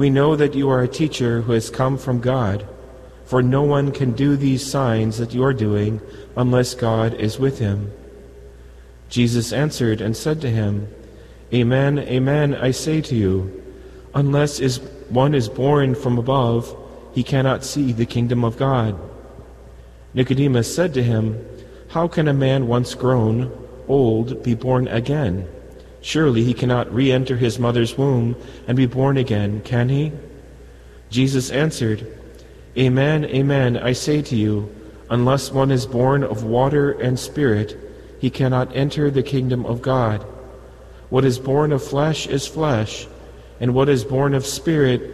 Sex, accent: male, American